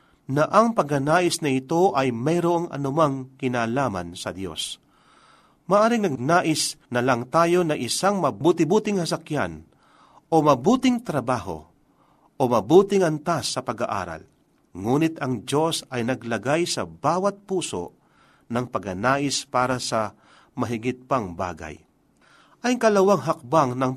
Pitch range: 125-170 Hz